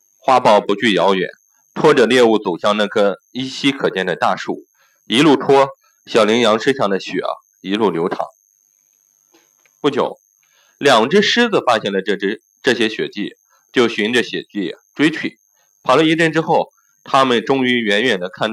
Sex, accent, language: male, native, Chinese